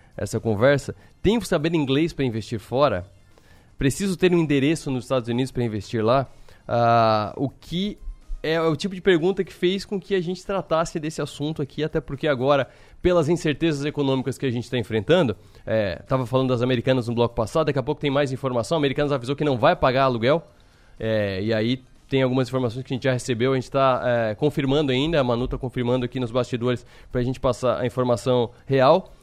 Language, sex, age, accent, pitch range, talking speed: Portuguese, male, 20-39, Brazilian, 125-160 Hz, 205 wpm